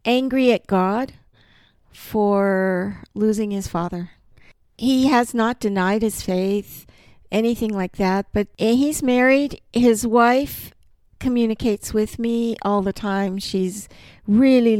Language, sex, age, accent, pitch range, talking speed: English, female, 50-69, American, 195-250 Hz, 120 wpm